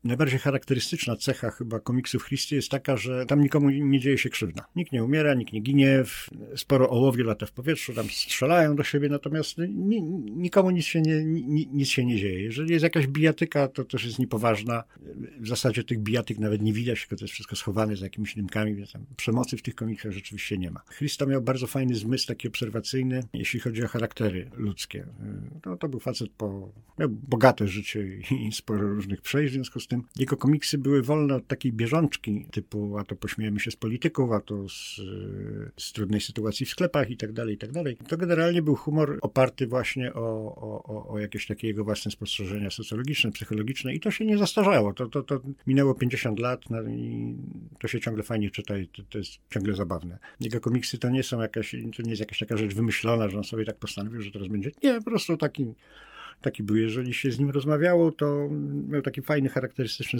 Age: 50-69